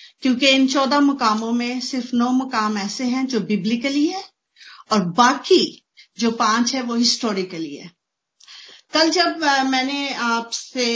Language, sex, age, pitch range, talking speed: Hindi, female, 50-69, 195-255 Hz, 135 wpm